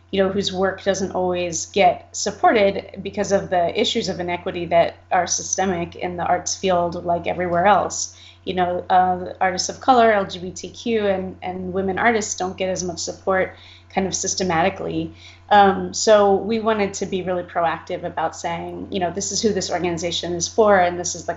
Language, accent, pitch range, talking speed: English, American, 175-195 Hz, 185 wpm